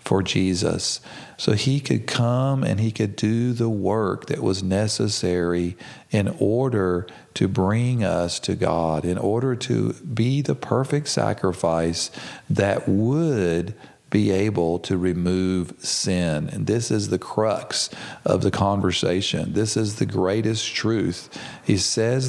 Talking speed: 135 wpm